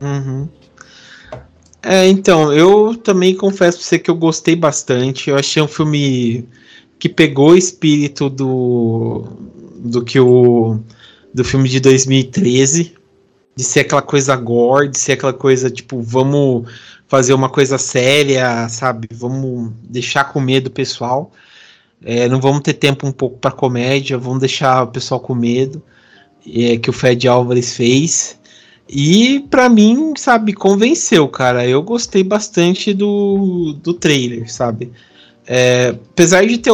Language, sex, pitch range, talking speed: Portuguese, male, 130-165 Hz, 135 wpm